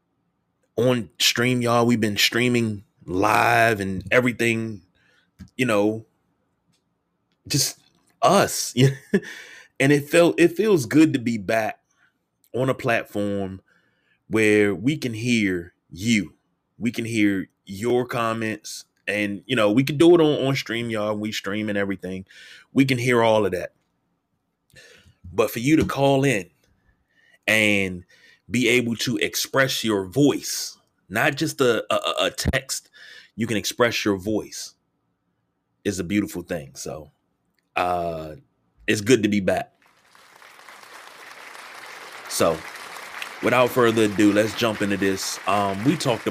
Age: 20-39